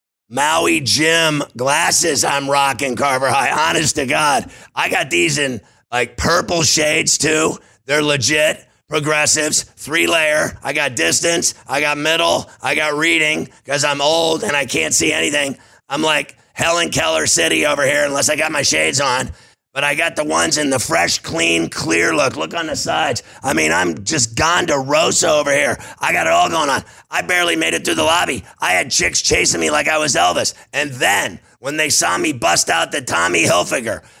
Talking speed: 190 wpm